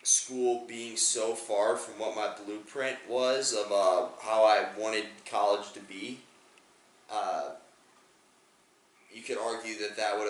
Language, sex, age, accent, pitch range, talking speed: English, male, 20-39, American, 100-120 Hz, 140 wpm